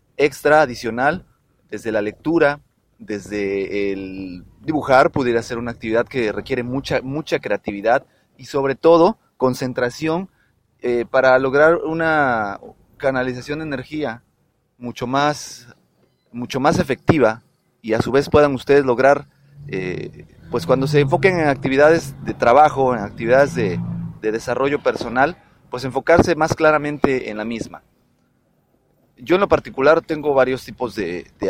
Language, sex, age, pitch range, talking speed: Spanish, male, 30-49, 120-155 Hz, 135 wpm